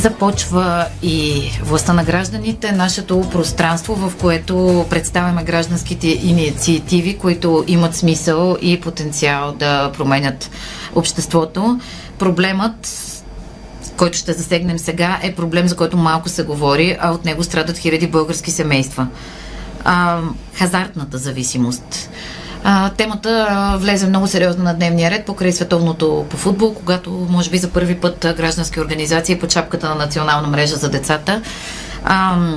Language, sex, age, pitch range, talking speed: Bulgarian, female, 30-49, 160-180 Hz, 125 wpm